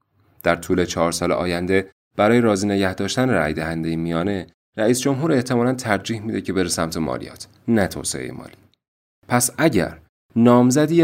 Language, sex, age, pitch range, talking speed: Persian, male, 30-49, 80-115 Hz, 145 wpm